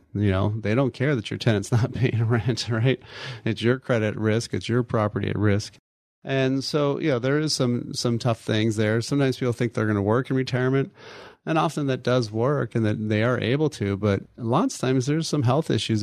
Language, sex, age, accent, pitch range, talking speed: English, male, 30-49, American, 105-125 Hz, 230 wpm